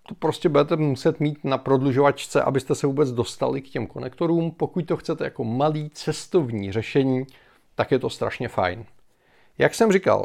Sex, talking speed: male, 165 wpm